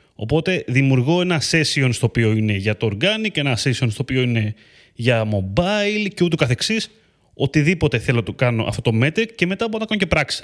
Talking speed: 200 wpm